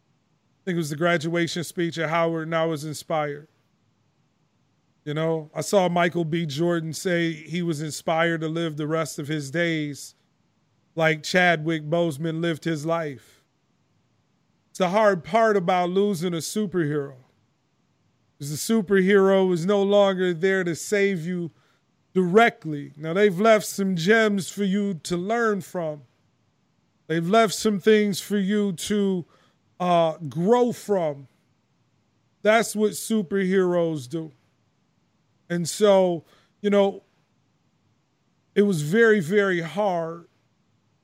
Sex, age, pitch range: male, 30-49, 155-195 Hz